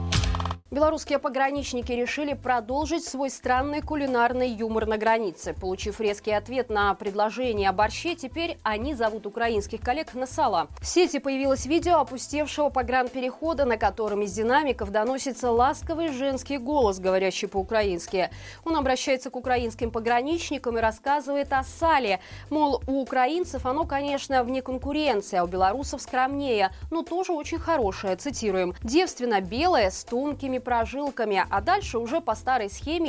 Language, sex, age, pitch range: Russian, female, 20-39, 220-285 Hz